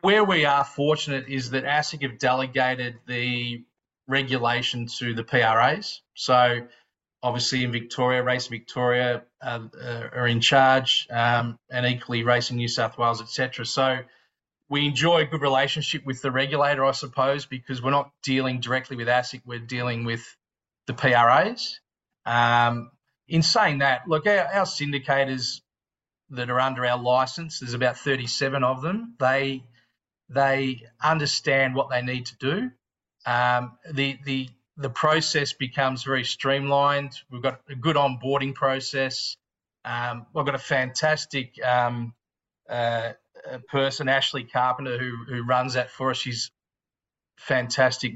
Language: English